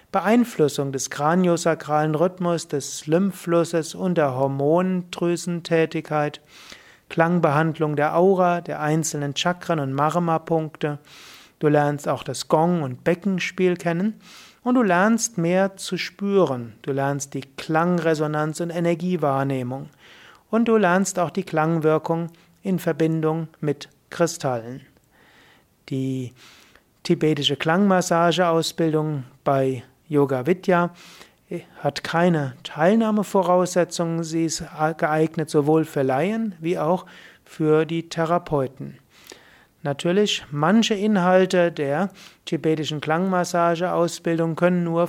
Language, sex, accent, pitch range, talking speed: German, male, German, 150-180 Hz, 100 wpm